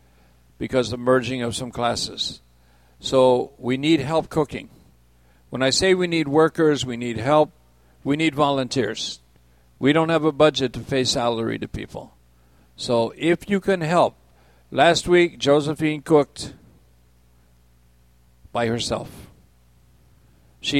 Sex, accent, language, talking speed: male, American, English, 135 wpm